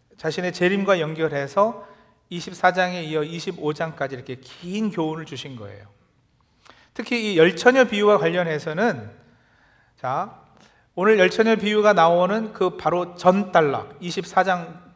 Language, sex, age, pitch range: Korean, male, 40-59, 150-210 Hz